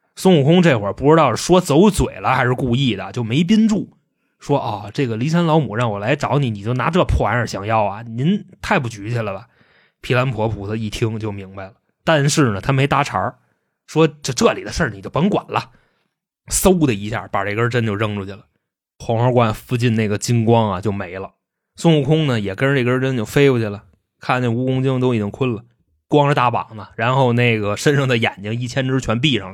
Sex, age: male, 20-39